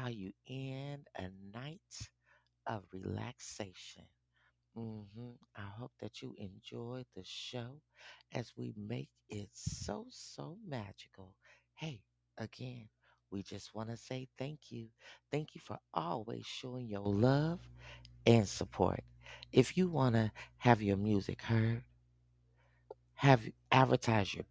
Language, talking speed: English, 125 wpm